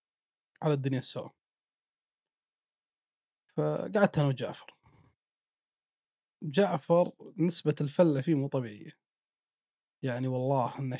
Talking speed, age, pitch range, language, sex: 80 wpm, 30-49, 135-155 Hz, Arabic, male